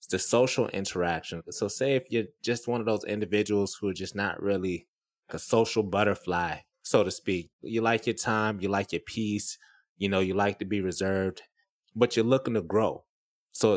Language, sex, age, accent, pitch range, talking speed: English, male, 20-39, American, 95-115 Hz, 195 wpm